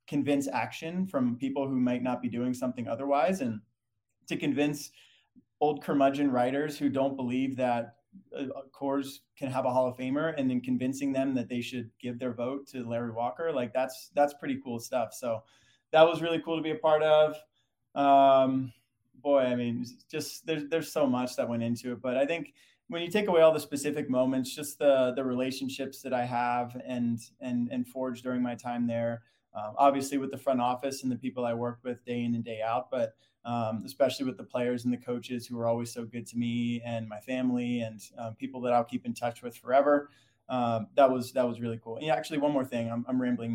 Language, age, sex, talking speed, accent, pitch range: English, 20-39, male, 220 wpm, American, 120-140 Hz